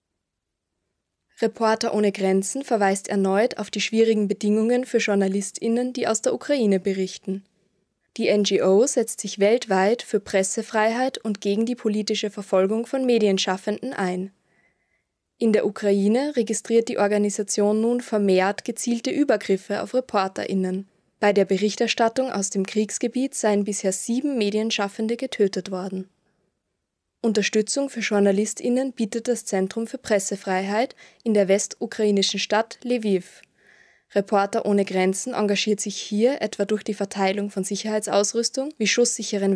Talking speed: 125 wpm